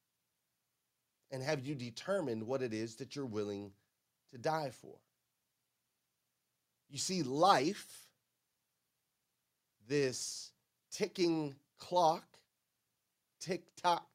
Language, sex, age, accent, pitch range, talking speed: English, male, 30-49, American, 110-145 Hz, 85 wpm